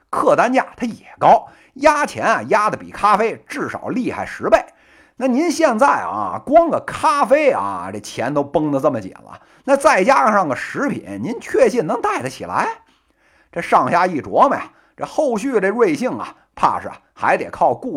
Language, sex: Chinese, male